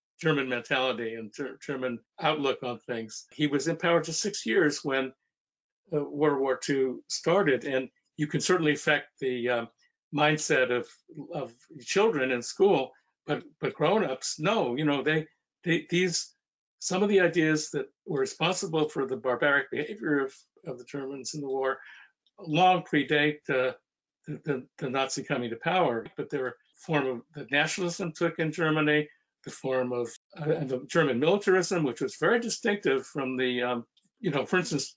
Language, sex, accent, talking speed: English, male, American, 165 wpm